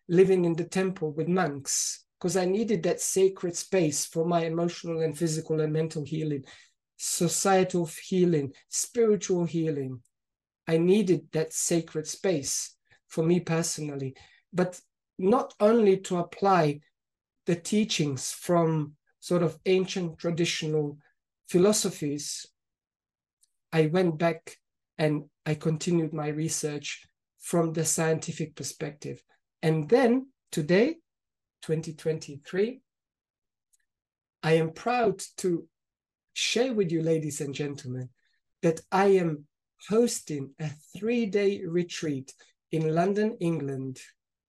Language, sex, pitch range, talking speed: English, male, 155-185 Hz, 110 wpm